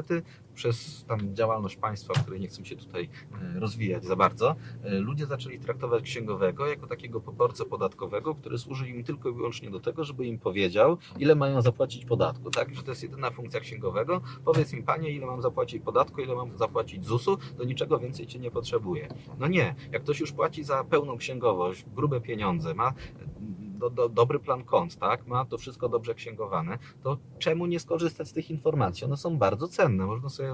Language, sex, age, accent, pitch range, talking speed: Polish, male, 30-49, native, 120-160 Hz, 190 wpm